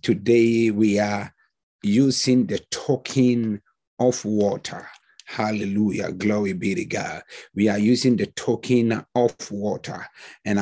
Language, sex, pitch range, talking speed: English, male, 110-130 Hz, 120 wpm